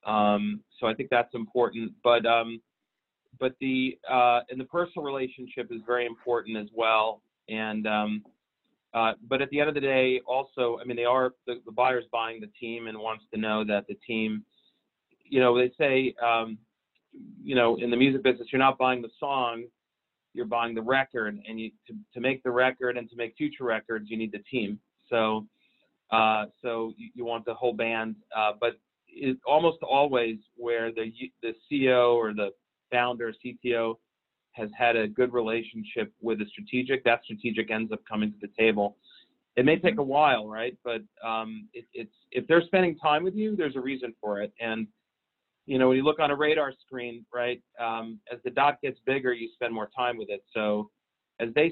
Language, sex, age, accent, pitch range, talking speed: Hebrew, male, 30-49, American, 110-130 Hz, 200 wpm